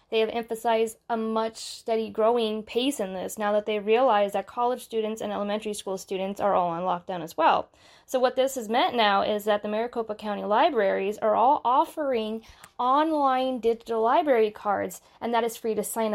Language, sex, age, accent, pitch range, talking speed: English, female, 10-29, American, 210-260 Hz, 195 wpm